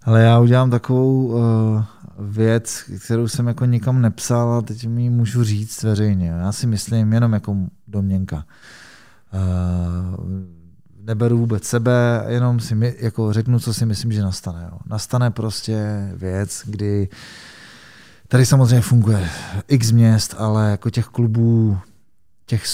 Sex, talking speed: male, 135 wpm